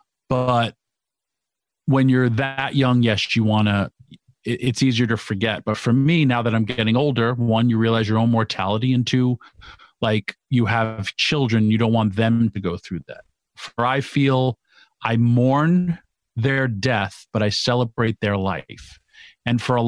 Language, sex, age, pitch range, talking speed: English, male, 40-59, 115-130 Hz, 170 wpm